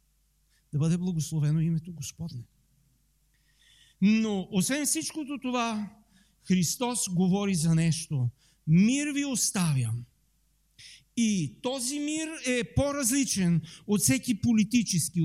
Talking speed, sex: 95 wpm, male